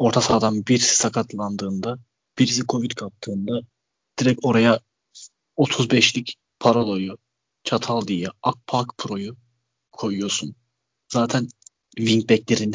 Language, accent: Turkish, native